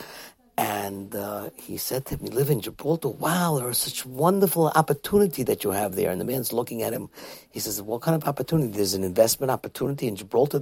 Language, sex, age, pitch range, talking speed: English, male, 50-69, 125-180 Hz, 205 wpm